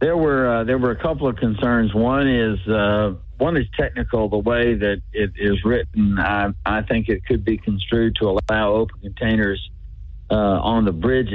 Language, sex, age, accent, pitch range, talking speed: English, male, 60-79, American, 95-115 Hz, 190 wpm